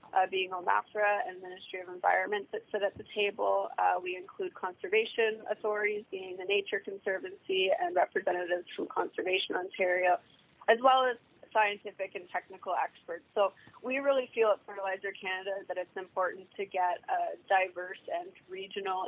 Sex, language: female, English